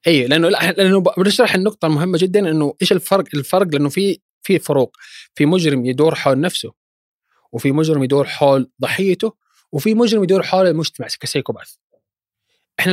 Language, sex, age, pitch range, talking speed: Arabic, male, 20-39, 130-165 Hz, 150 wpm